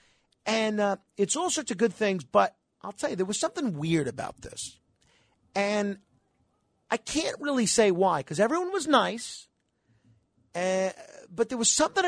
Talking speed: 165 wpm